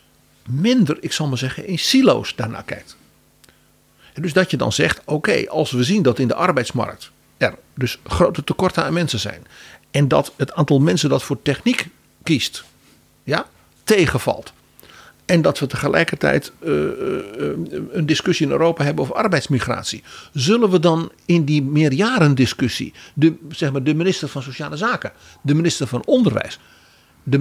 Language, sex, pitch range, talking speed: Dutch, male, 120-165 Hz, 165 wpm